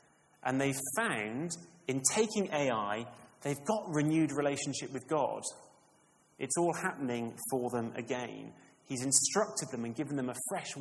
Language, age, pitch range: English, 30-49, 140-195 Hz